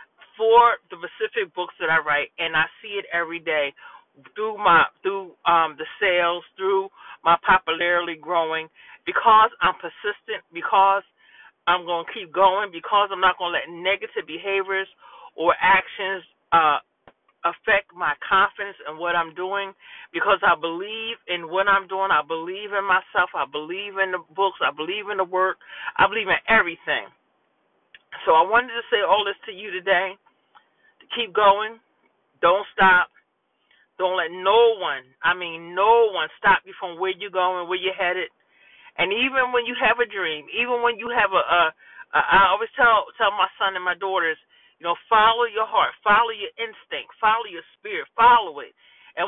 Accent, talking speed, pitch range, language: American, 175 wpm, 180-240 Hz, English